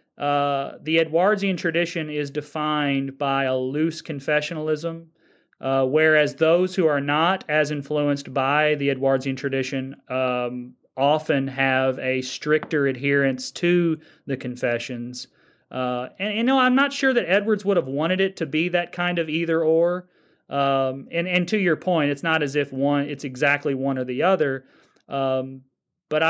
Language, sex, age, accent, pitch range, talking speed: English, male, 30-49, American, 135-165 Hz, 160 wpm